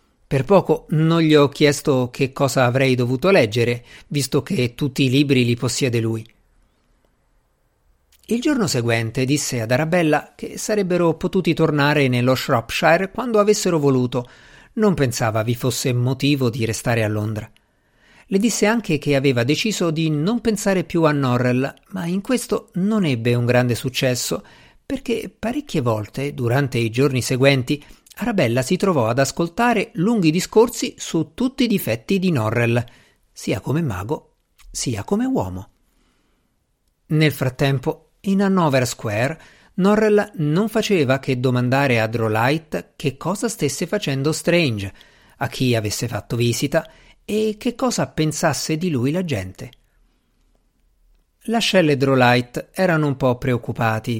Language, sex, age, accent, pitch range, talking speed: Italian, male, 50-69, native, 125-180 Hz, 140 wpm